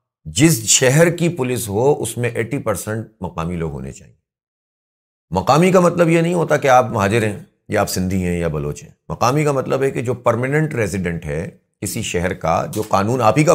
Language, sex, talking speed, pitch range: Urdu, male, 210 wpm, 100-150 Hz